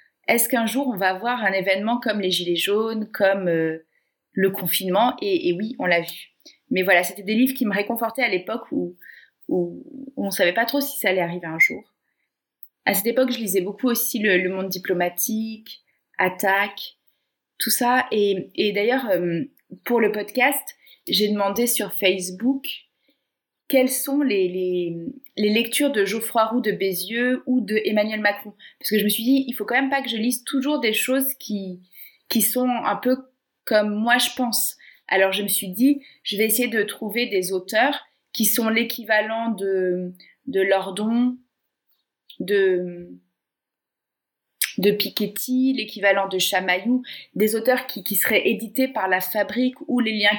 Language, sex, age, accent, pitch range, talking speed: French, female, 30-49, French, 195-250 Hz, 175 wpm